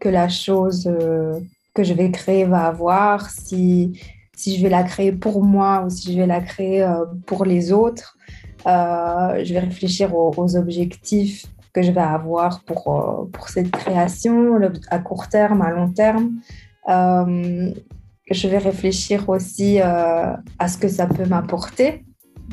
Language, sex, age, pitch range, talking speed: French, female, 20-39, 180-210 Hz, 155 wpm